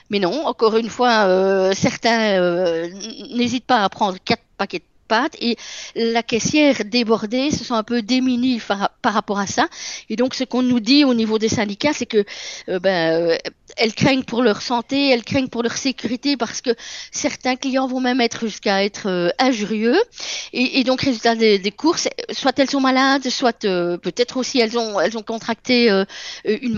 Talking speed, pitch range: 190 wpm, 205-255 Hz